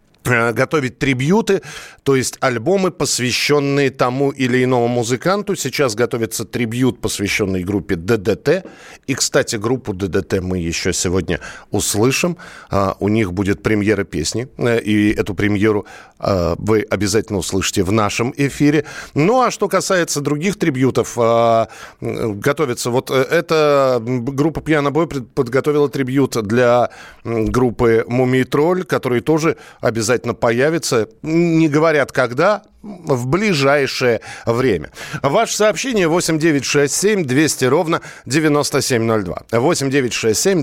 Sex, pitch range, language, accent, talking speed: male, 115-150 Hz, Russian, native, 105 wpm